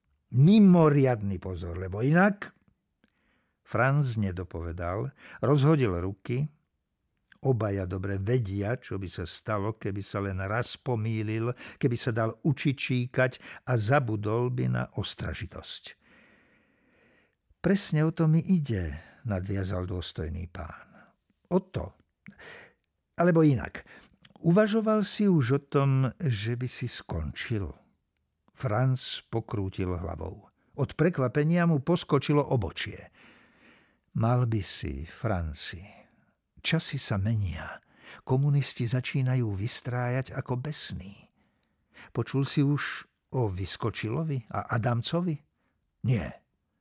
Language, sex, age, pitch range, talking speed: Slovak, male, 60-79, 100-145 Hz, 100 wpm